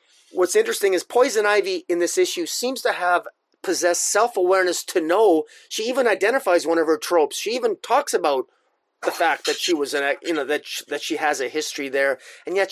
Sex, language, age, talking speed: male, English, 30-49, 210 wpm